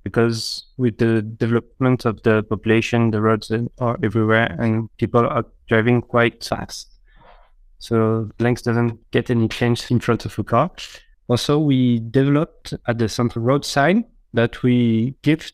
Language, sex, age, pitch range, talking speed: English, male, 20-39, 110-125 Hz, 150 wpm